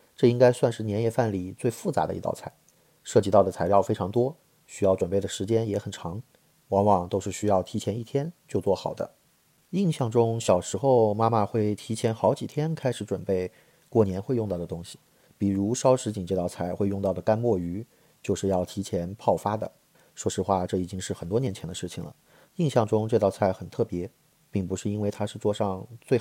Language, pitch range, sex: Chinese, 95-120 Hz, male